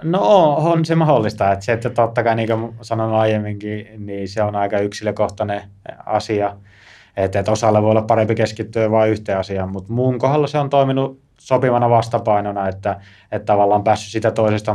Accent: native